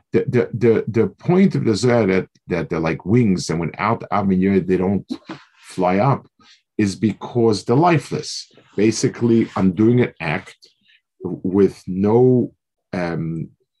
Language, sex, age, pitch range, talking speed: English, male, 50-69, 95-120 Hz, 130 wpm